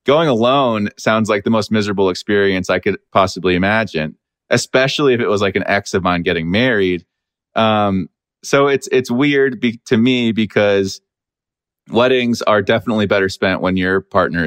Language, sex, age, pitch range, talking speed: English, male, 30-49, 90-115 Hz, 165 wpm